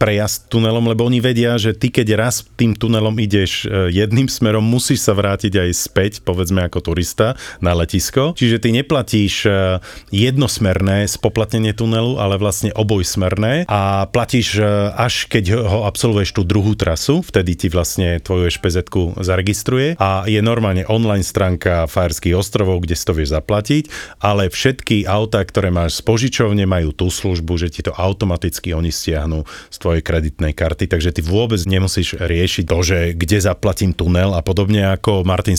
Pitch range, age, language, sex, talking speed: 90-115 Hz, 40-59, Slovak, male, 155 wpm